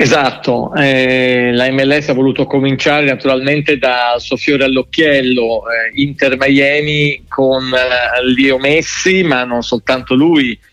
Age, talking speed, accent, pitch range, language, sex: 40-59, 115 wpm, native, 130-150 Hz, Italian, male